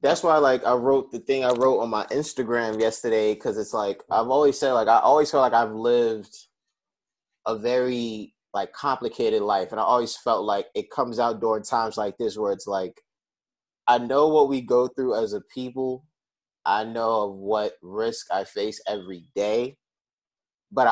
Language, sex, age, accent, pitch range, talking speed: English, male, 20-39, American, 115-155 Hz, 185 wpm